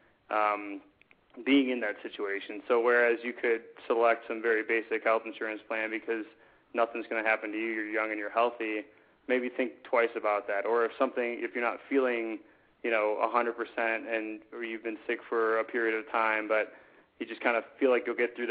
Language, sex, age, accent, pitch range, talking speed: English, male, 20-39, American, 110-120 Hz, 210 wpm